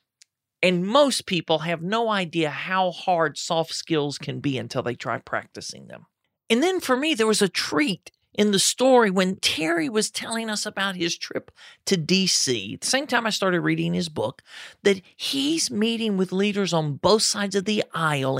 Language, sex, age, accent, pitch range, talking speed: English, male, 40-59, American, 155-220 Hz, 185 wpm